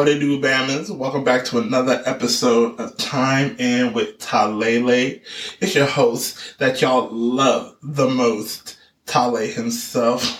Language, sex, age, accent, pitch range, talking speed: English, male, 20-39, American, 130-185 Hz, 135 wpm